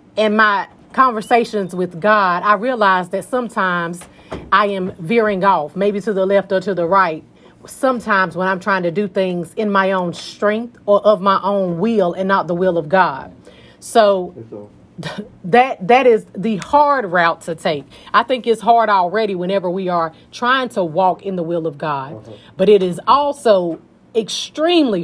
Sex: female